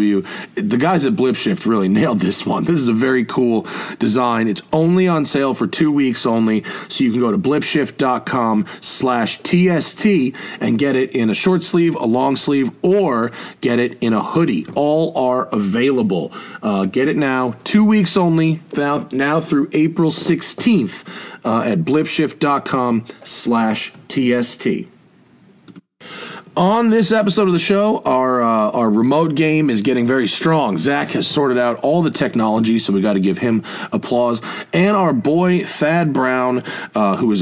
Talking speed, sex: 160 wpm, male